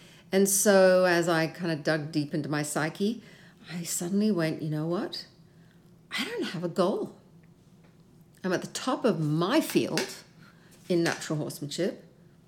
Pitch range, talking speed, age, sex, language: 155-175 Hz, 155 wpm, 50-69, female, English